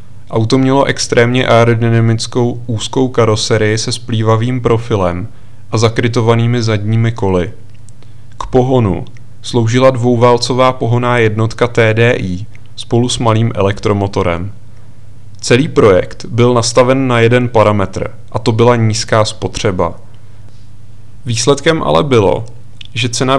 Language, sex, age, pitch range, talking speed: Czech, male, 30-49, 105-120 Hz, 105 wpm